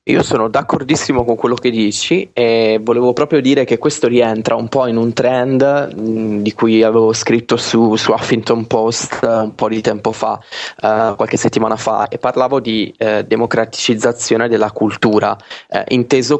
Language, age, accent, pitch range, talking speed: Italian, 20-39, native, 110-125 Hz, 155 wpm